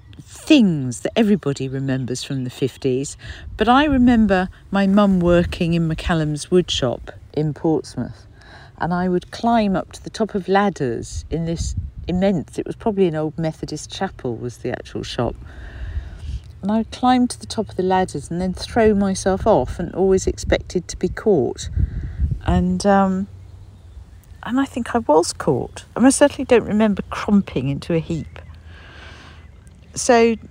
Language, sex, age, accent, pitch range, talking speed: English, female, 50-69, British, 135-205 Hz, 160 wpm